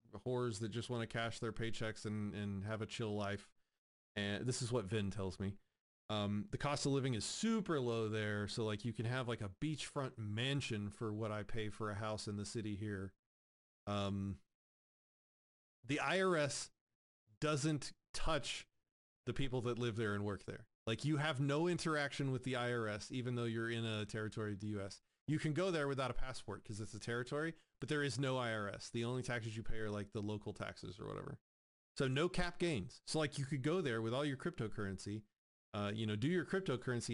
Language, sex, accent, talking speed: English, male, American, 205 wpm